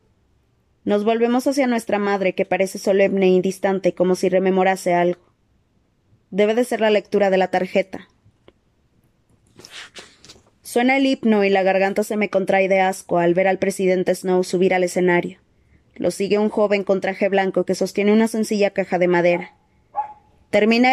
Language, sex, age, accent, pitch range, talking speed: Spanish, female, 20-39, Mexican, 185-210 Hz, 160 wpm